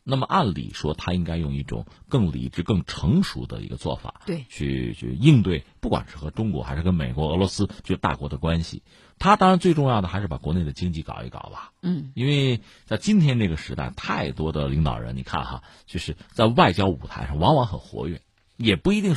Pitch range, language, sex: 80-130 Hz, Chinese, male